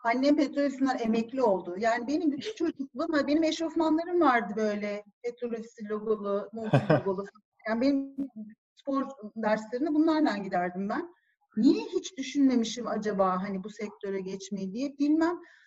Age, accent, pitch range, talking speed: 40-59, native, 200-300 Hz, 125 wpm